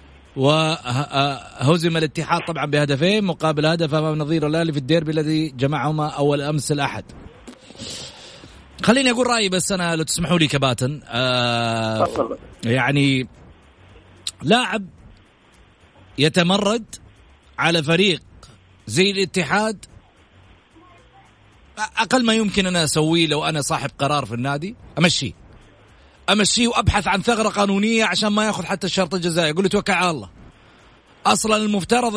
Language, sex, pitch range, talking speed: Arabic, male, 145-215 Hz, 115 wpm